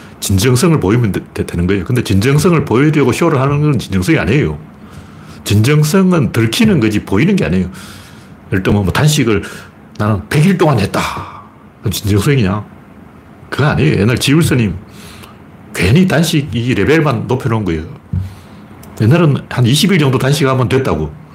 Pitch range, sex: 100-145 Hz, male